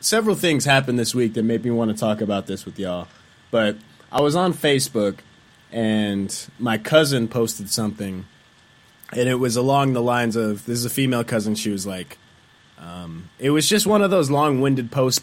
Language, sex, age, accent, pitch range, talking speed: English, male, 20-39, American, 105-130 Hz, 195 wpm